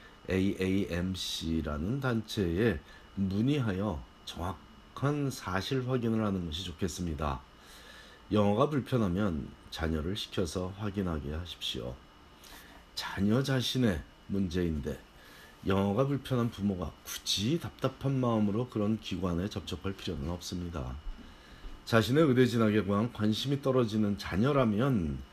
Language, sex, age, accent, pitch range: Korean, male, 40-59, native, 85-120 Hz